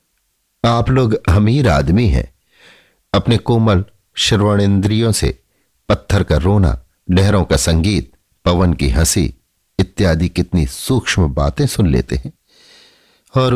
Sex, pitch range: male, 80-110 Hz